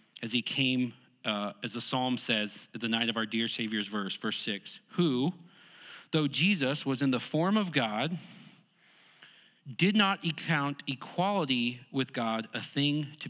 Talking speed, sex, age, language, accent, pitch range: 160 wpm, male, 40-59, English, American, 125-170 Hz